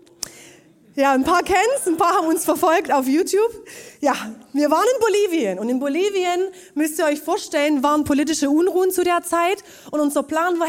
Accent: German